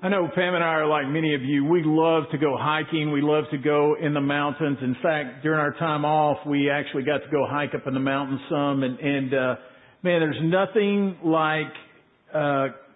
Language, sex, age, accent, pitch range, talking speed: English, male, 50-69, American, 150-185 Hz, 220 wpm